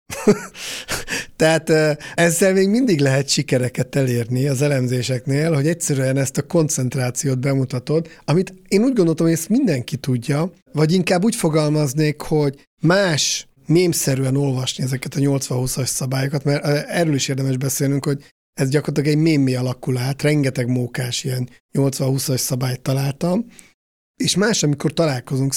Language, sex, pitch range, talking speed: Hungarian, male, 130-160 Hz, 130 wpm